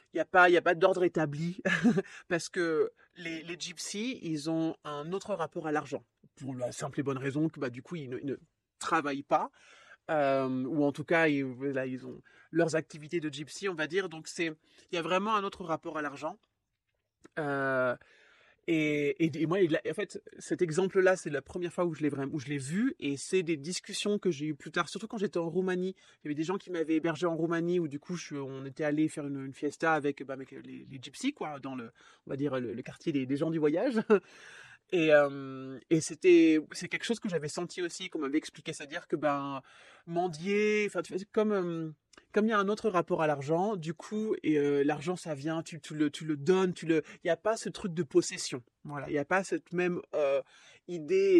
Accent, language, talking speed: French, French, 235 wpm